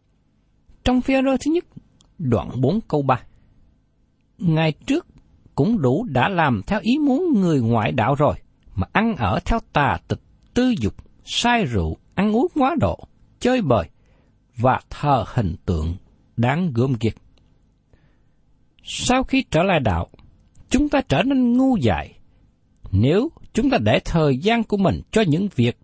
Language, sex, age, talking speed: Vietnamese, male, 60-79, 155 wpm